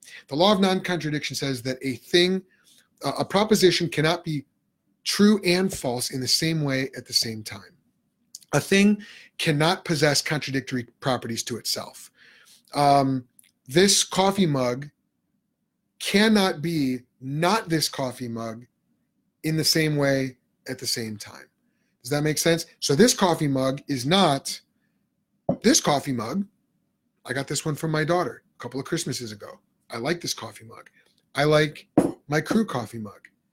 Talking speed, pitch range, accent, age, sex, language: 150 wpm, 130-180 Hz, American, 30-49, male, English